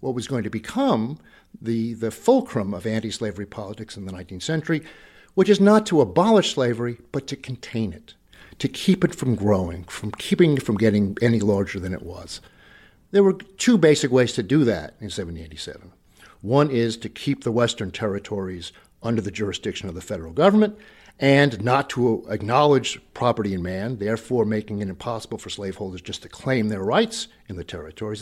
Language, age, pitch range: English, 50-69, 105-150 Hz